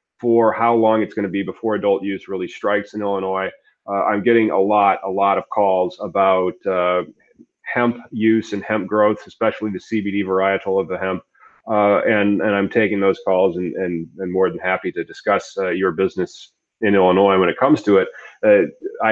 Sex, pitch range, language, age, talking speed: male, 95-120 Hz, English, 30-49, 200 wpm